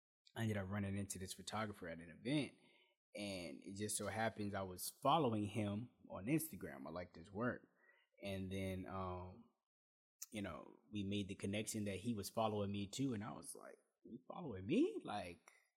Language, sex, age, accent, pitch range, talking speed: English, male, 20-39, American, 95-115 Hz, 185 wpm